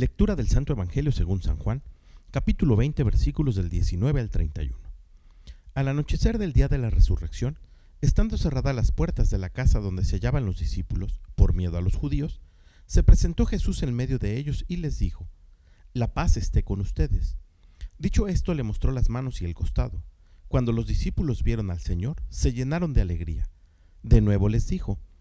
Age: 50-69